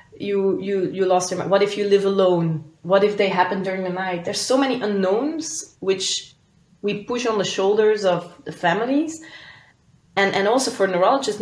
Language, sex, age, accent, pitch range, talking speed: English, female, 20-39, Belgian, 165-200 Hz, 190 wpm